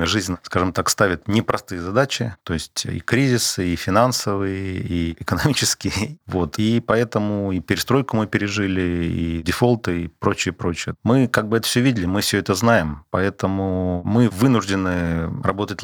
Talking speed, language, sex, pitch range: 150 wpm, Russian, male, 85-110 Hz